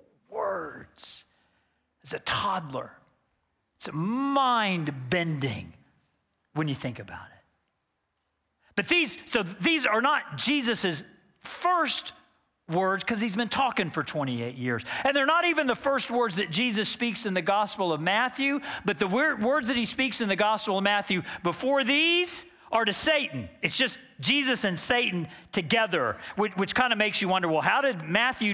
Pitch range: 195-275 Hz